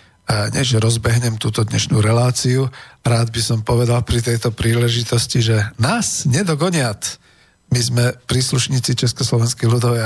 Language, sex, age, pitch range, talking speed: Slovak, male, 50-69, 110-120 Hz, 125 wpm